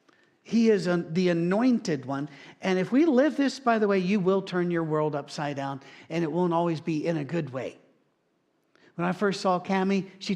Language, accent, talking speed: English, American, 205 wpm